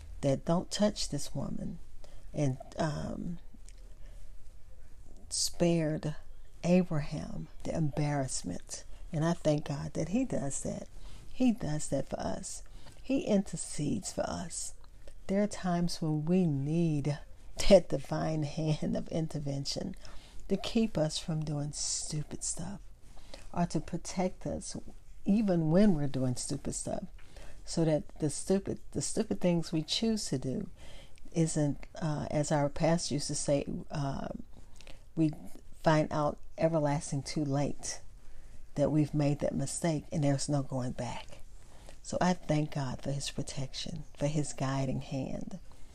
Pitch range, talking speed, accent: 140-175 Hz, 135 wpm, American